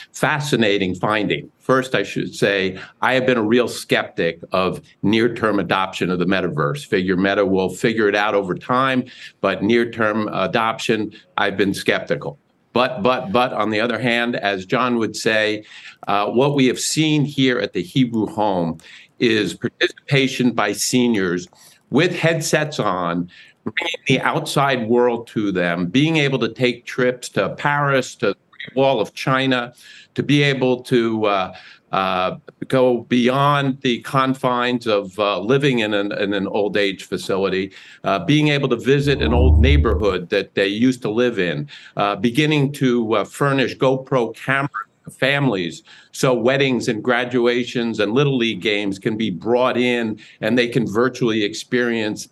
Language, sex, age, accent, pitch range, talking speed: English, male, 50-69, American, 105-130 Hz, 155 wpm